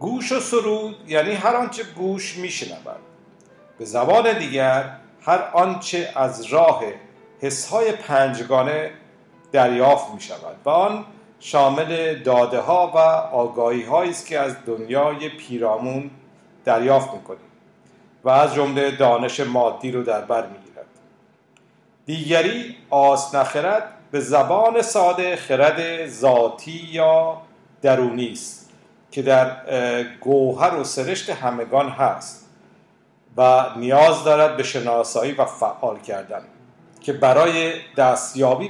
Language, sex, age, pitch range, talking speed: Persian, male, 50-69, 125-170 Hz, 110 wpm